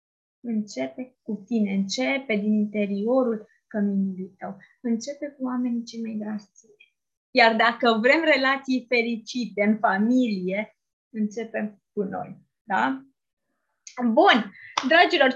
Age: 20-39